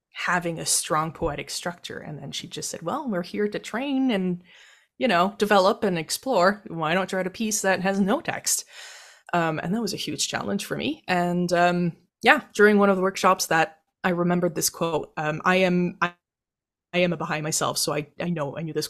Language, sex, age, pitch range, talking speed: English, female, 20-39, 170-205 Hz, 215 wpm